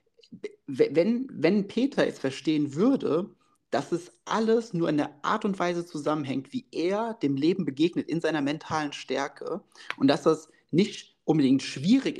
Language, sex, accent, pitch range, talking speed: German, male, German, 150-230 Hz, 155 wpm